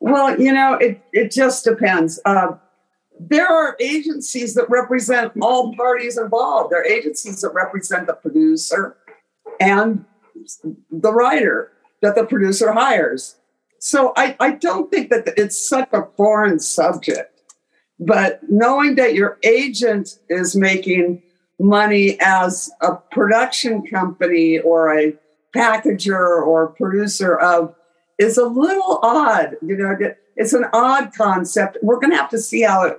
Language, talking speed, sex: English, 140 wpm, female